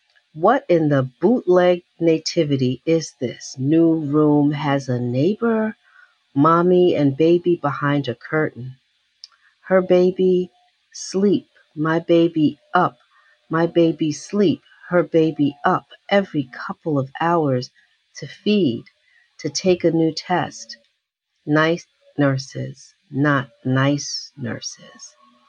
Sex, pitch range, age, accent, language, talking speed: female, 135-175 Hz, 50-69, American, English, 110 wpm